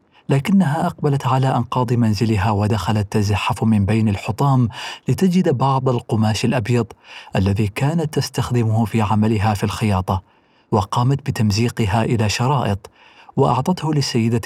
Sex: male